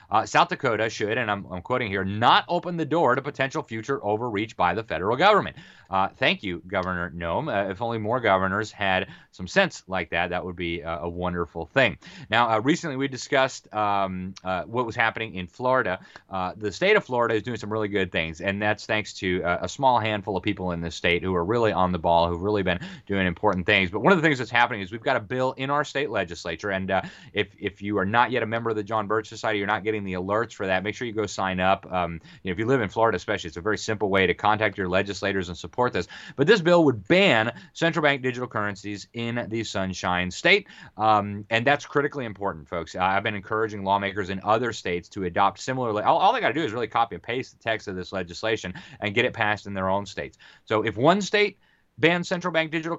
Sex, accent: male, American